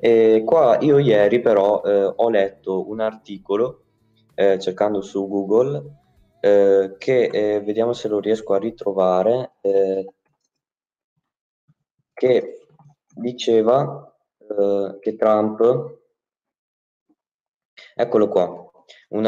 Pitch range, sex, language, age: 100-120 Hz, male, Italian, 20-39